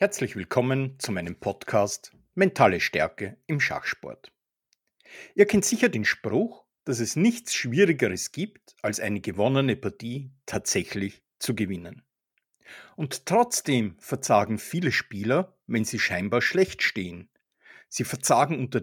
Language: German